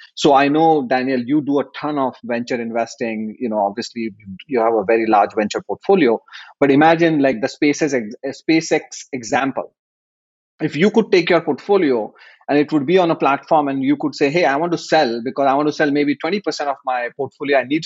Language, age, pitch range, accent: English, 30-49, 130-150 Hz, Indian